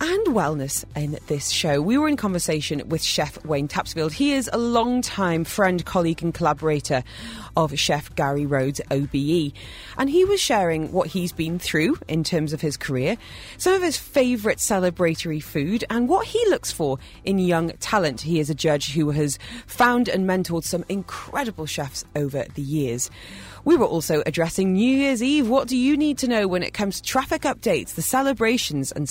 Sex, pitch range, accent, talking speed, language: female, 145-240 Hz, British, 185 wpm, English